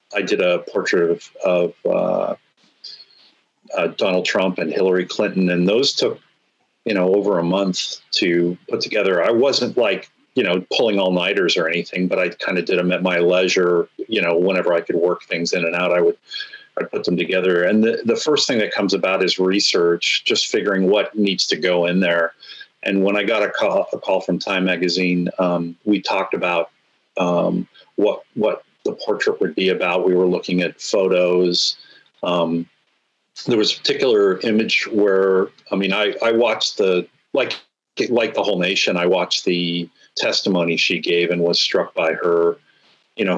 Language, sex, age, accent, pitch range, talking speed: English, male, 40-59, American, 85-105 Hz, 185 wpm